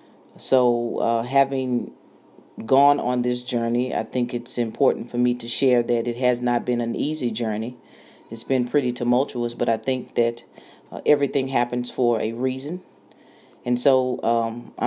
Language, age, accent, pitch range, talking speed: English, 40-59, American, 120-140 Hz, 160 wpm